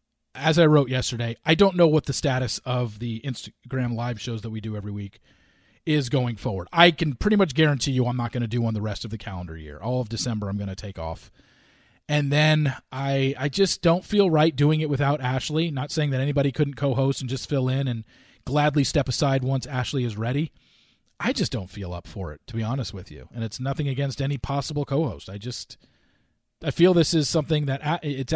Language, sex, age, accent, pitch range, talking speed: English, male, 40-59, American, 110-150 Hz, 225 wpm